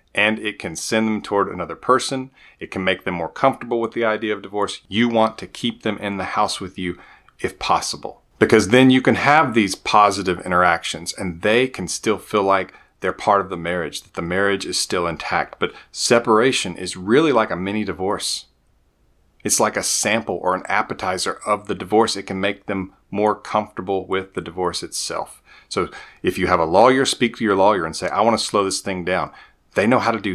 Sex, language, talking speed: male, English, 215 wpm